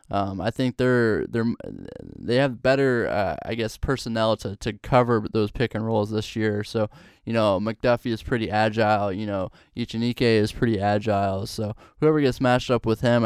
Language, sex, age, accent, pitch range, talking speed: English, male, 10-29, American, 110-120 Hz, 185 wpm